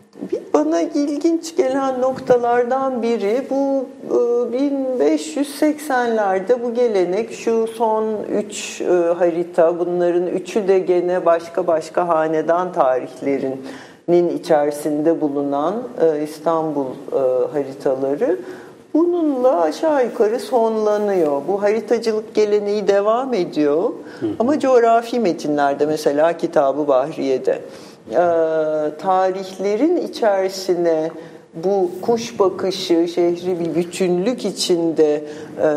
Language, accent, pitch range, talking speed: Turkish, native, 160-225 Hz, 85 wpm